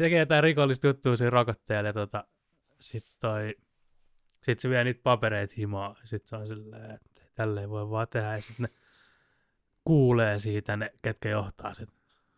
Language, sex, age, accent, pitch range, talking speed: Finnish, male, 20-39, native, 105-120 Hz, 155 wpm